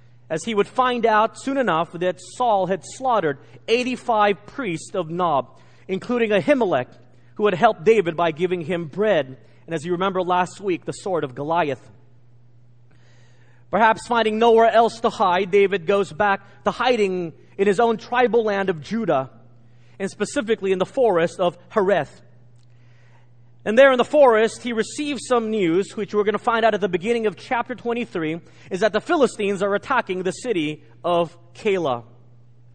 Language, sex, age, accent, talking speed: English, male, 30-49, American, 165 wpm